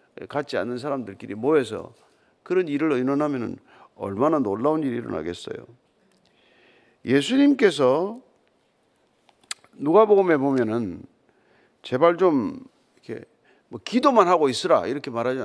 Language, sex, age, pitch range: Korean, male, 50-69, 160-215 Hz